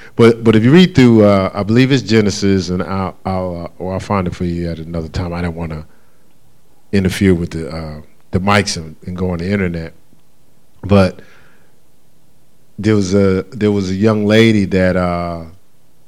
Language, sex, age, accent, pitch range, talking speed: English, male, 40-59, American, 90-110 Hz, 190 wpm